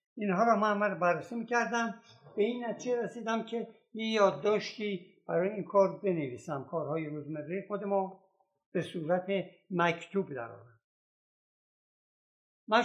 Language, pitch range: Persian, 165-220 Hz